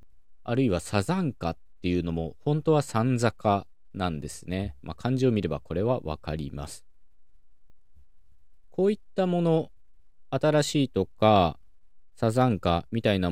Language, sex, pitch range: Japanese, male, 85-110 Hz